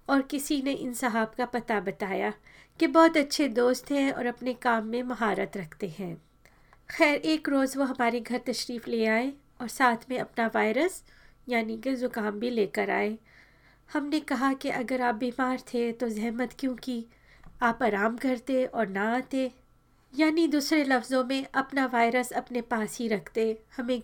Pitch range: 225-265 Hz